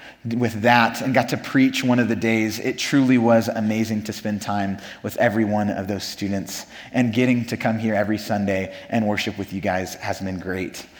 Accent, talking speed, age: American, 205 wpm, 20-39